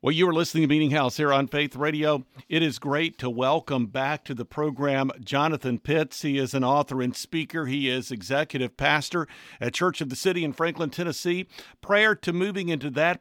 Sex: male